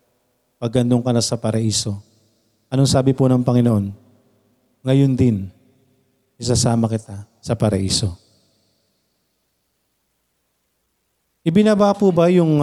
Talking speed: 95 wpm